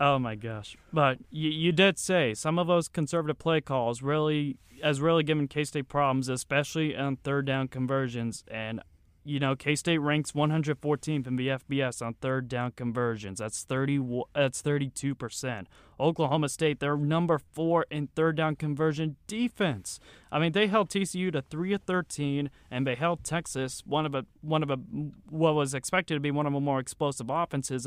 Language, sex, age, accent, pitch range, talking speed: English, male, 20-39, American, 130-160 Hz, 185 wpm